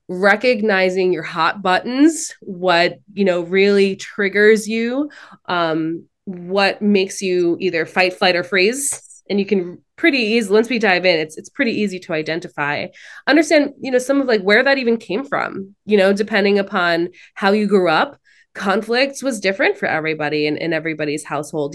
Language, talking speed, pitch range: English, 170 wpm, 175-220 Hz